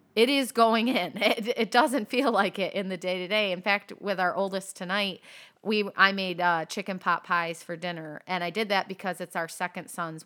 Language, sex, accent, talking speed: English, female, American, 215 wpm